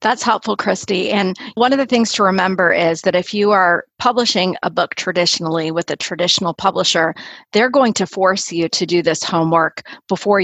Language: English